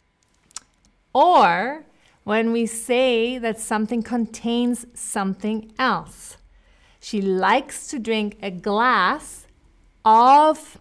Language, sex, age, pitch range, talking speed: English, female, 30-49, 205-255 Hz, 90 wpm